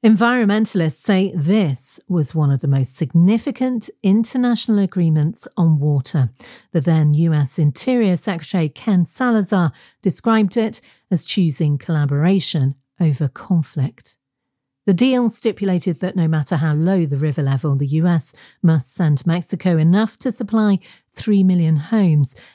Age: 40-59